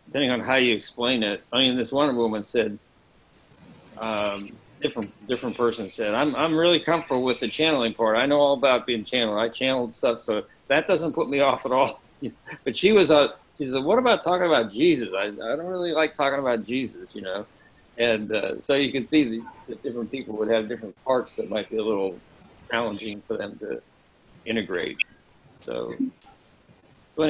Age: 50-69